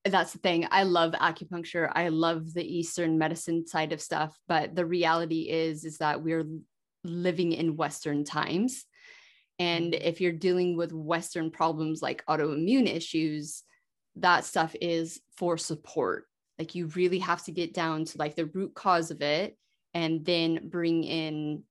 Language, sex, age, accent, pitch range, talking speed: English, female, 20-39, American, 160-195 Hz, 160 wpm